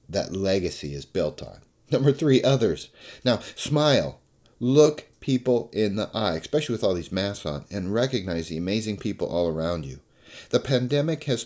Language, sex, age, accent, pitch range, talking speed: English, male, 40-59, American, 85-125 Hz, 170 wpm